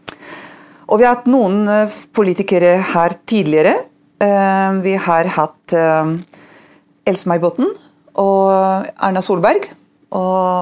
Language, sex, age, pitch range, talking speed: English, female, 40-59, 165-215 Hz, 95 wpm